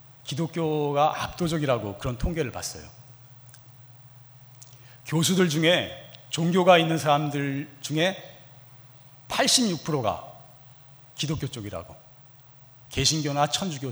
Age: 40-59